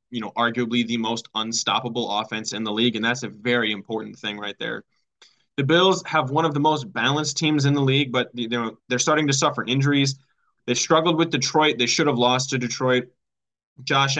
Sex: male